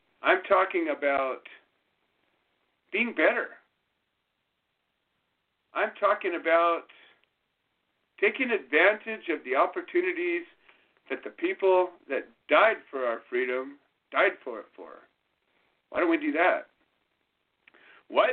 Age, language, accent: 50-69, English, American